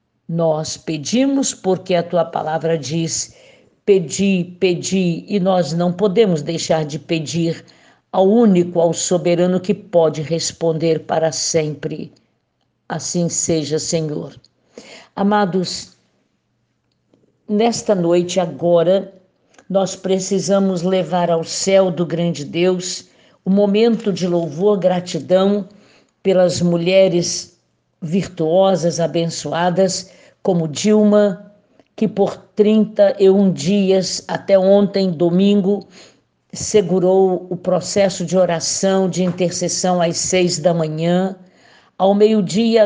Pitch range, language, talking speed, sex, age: 165-195 Hz, Portuguese, 100 wpm, female, 60-79